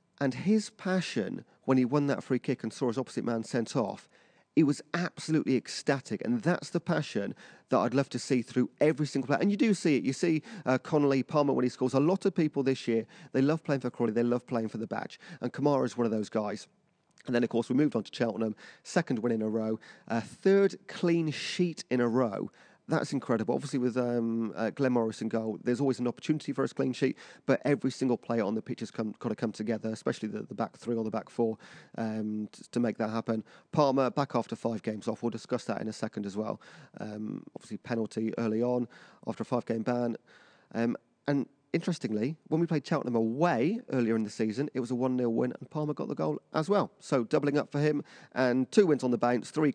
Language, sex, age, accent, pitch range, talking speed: English, male, 40-59, British, 115-155 Hz, 235 wpm